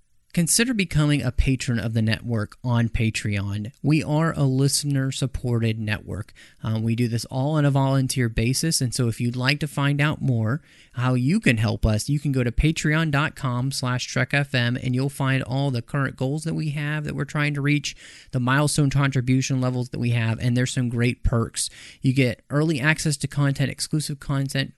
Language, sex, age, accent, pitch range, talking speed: English, male, 30-49, American, 120-150 Hz, 190 wpm